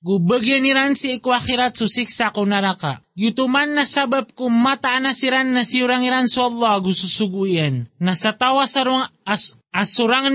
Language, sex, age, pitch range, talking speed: Filipino, male, 20-39, 200-250 Hz, 140 wpm